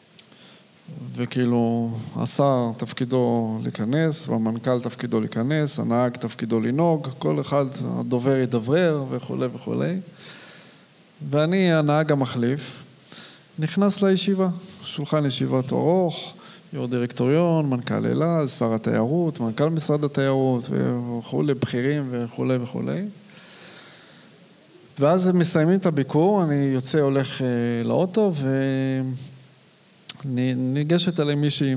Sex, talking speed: male, 95 wpm